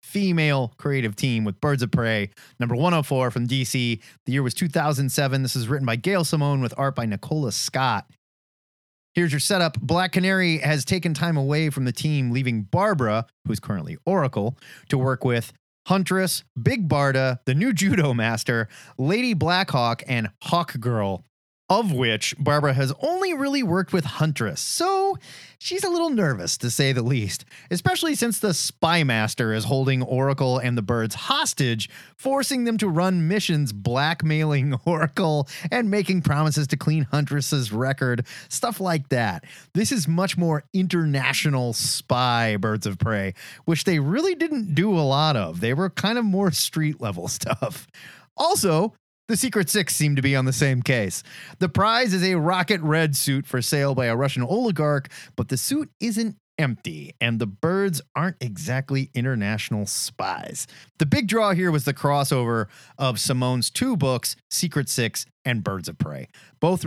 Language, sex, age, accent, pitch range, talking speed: English, male, 30-49, American, 125-175 Hz, 165 wpm